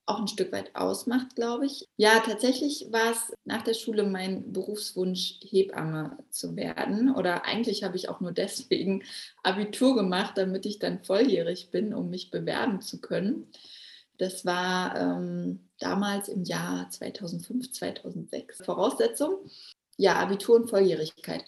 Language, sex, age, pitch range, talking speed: German, female, 20-39, 185-225 Hz, 140 wpm